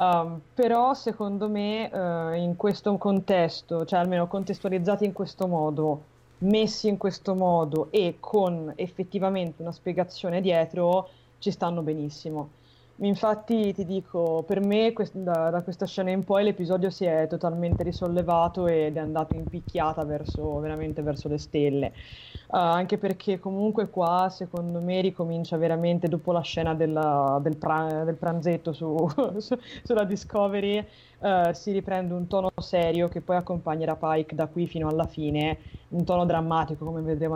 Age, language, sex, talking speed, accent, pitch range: 20-39, Italian, female, 150 wpm, native, 160-195 Hz